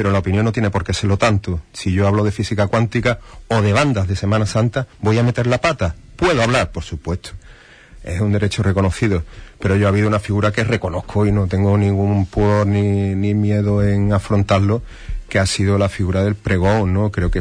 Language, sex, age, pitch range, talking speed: Spanish, male, 30-49, 95-110 Hz, 215 wpm